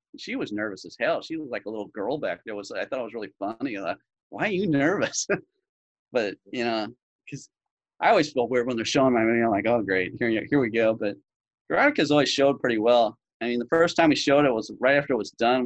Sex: male